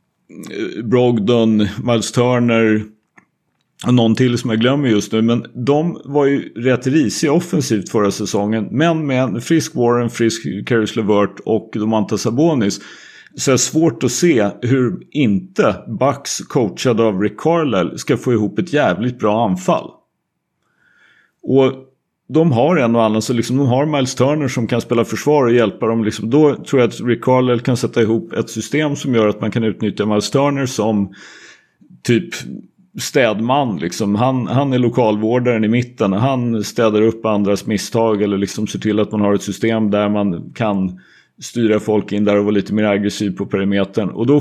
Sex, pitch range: male, 105-130 Hz